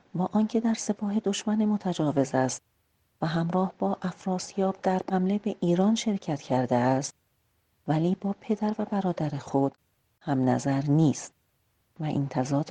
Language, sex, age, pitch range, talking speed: Persian, female, 40-59, 140-195 Hz, 140 wpm